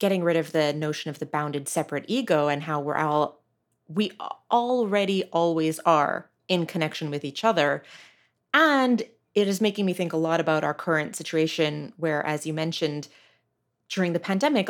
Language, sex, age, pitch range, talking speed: English, female, 30-49, 165-215 Hz, 170 wpm